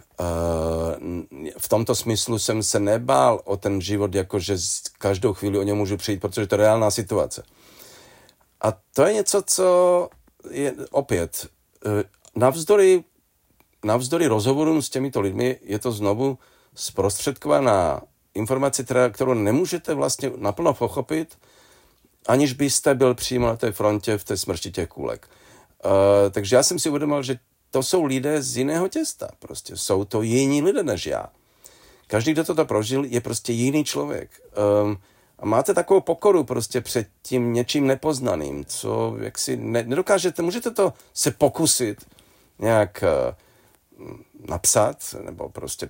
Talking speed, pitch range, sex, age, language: 135 wpm, 105-140 Hz, male, 40-59, Czech